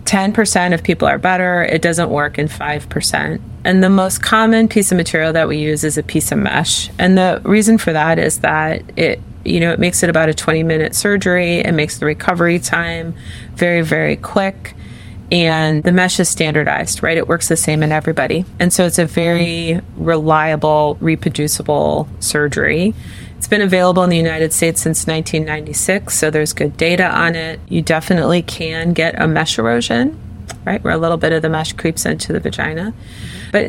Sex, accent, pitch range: female, American, 155-180 Hz